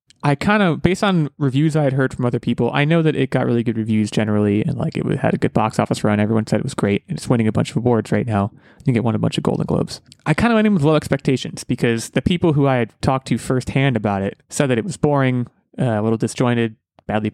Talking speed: 285 wpm